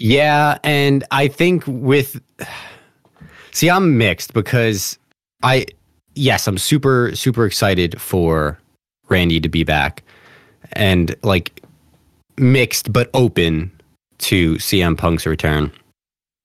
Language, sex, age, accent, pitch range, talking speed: English, male, 20-39, American, 95-125 Hz, 105 wpm